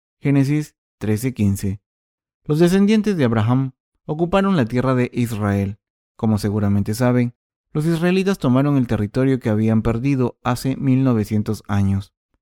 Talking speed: 120 wpm